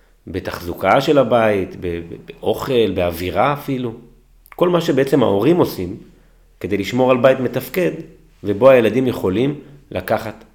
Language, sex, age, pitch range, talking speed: Hebrew, male, 30-49, 90-140 Hz, 115 wpm